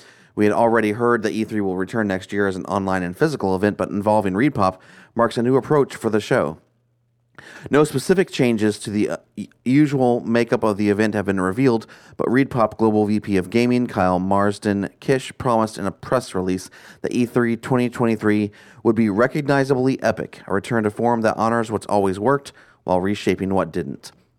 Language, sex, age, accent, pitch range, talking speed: English, male, 30-49, American, 95-120 Hz, 180 wpm